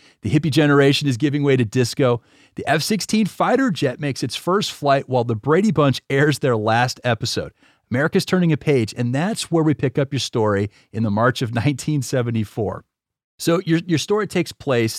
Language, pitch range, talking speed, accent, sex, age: English, 110-145 Hz, 190 wpm, American, male, 40-59